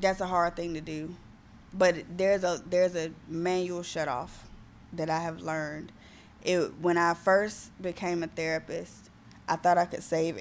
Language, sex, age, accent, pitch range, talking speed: English, female, 20-39, American, 155-175 Hz, 175 wpm